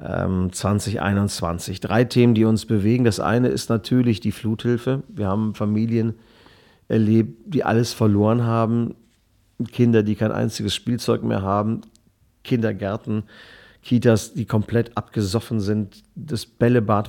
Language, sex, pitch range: German, male, 100-115 Hz